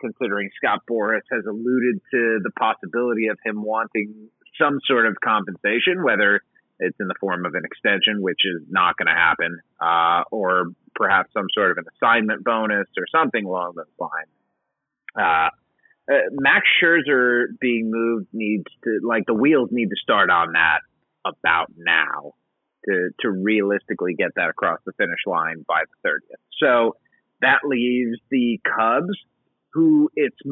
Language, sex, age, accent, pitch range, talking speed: English, male, 30-49, American, 105-135 Hz, 155 wpm